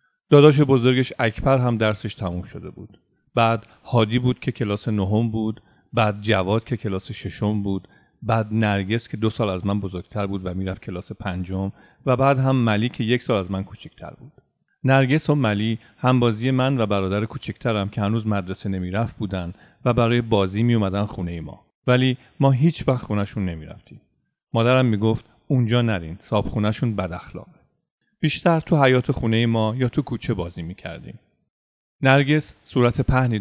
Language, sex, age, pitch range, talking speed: Persian, male, 40-59, 100-130 Hz, 165 wpm